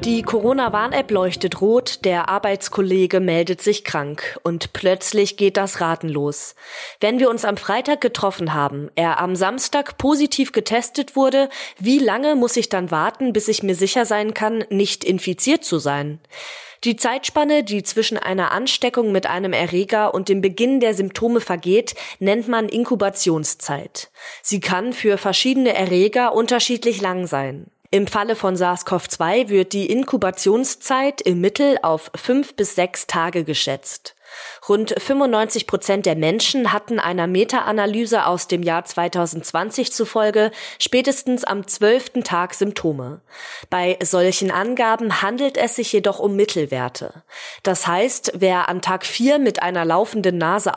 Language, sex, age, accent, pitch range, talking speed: German, female, 20-39, German, 180-235 Hz, 145 wpm